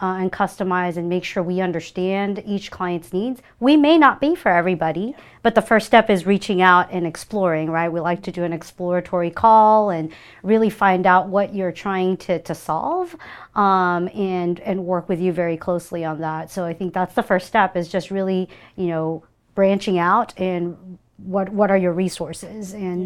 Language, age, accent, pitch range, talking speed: English, 40-59, American, 175-195 Hz, 195 wpm